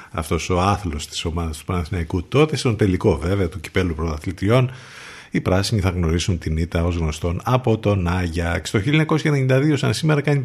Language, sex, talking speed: Greek, male, 170 wpm